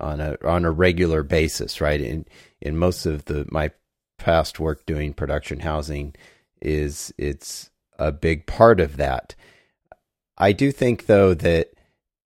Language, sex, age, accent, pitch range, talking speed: English, male, 40-59, American, 75-90 Hz, 145 wpm